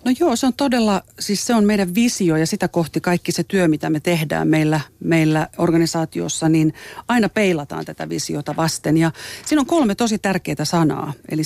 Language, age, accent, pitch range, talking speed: Finnish, 40-59, native, 160-225 Hz, 190 wpm